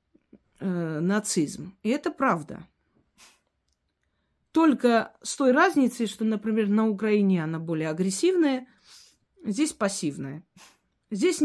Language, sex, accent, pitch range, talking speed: Russian, female, native, 195-250 Hz, 100 wpm